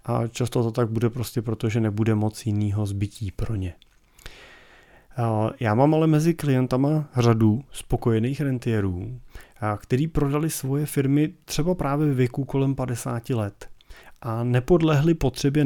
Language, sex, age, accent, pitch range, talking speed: Czech, male, 30-49, native, 110-125 Hz, 135 wpm